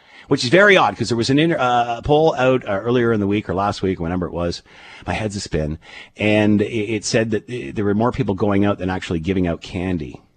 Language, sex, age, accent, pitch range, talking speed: English, male, 50-69, American, 90-115 Hz, 235 wpm